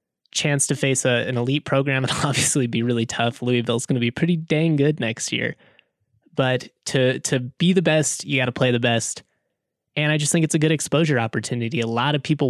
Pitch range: 125-155 Hz